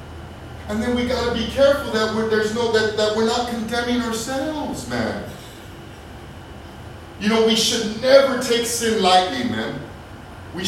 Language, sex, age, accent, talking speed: English, male, 40-59, American, 155 wpm